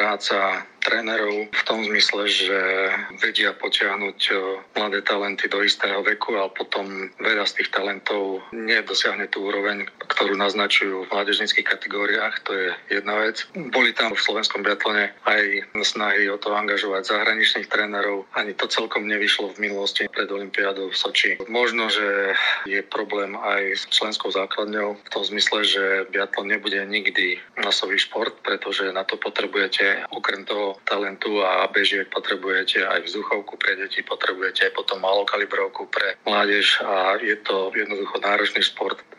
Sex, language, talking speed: male, Slovak, 145 wpm